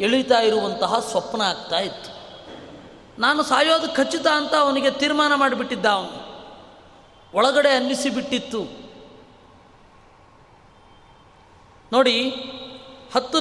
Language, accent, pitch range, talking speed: Kannada, native, 250-285 Hz, 75 wpm